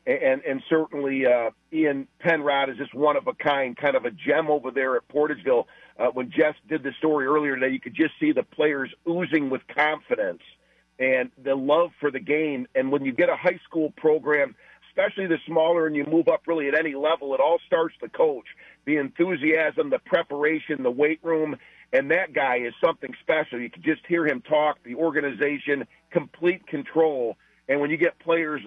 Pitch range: 140-165 Hz